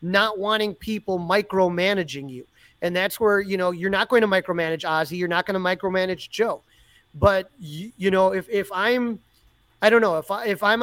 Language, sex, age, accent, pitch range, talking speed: English, male, 30-49, American, 180-220 Hz, 200 wpm